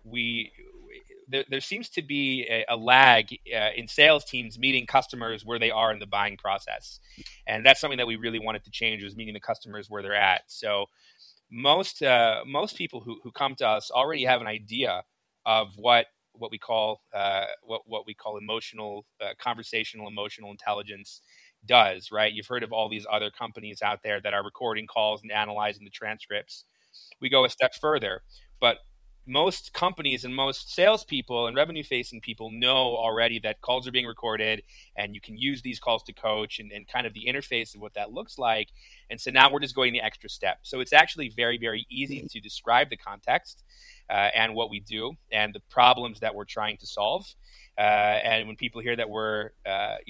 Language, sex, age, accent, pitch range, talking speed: English, male, 30-49, American, 105-130 Hz, 200 wpm